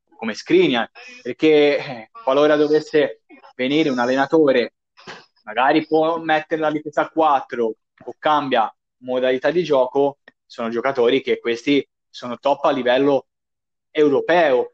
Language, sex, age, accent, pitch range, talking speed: Italian, male, 20-39, native, 145-200 Hz, 120 wpm